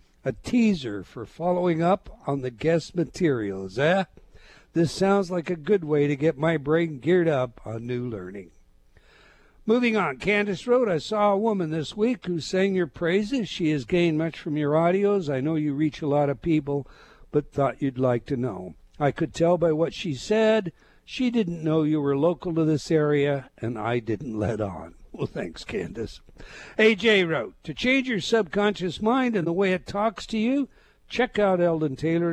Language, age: English, 60-79